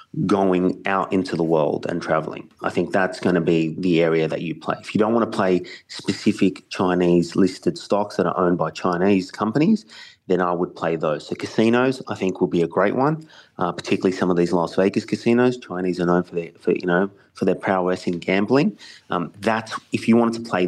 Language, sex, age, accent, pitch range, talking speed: English, male, 30-49, Australian, 90-105 Hz, 220 wpm